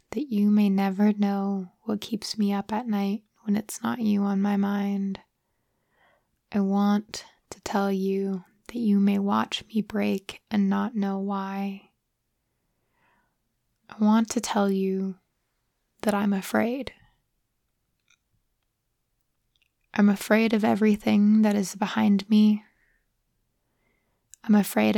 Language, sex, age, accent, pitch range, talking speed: English, female, 20-39, American, 200-215 Hz, 125 wpm